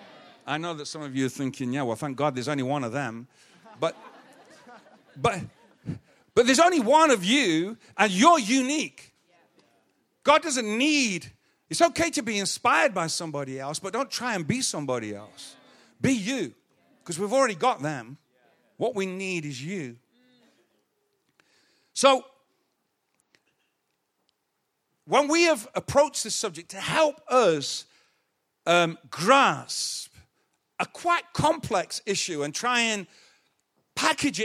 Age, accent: 50-69, British